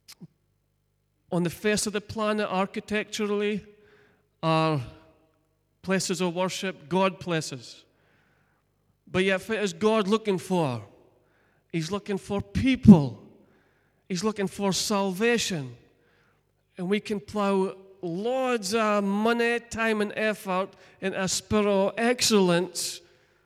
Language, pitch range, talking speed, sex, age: English, 170-205 Hz, 115 wpm, male, 40-59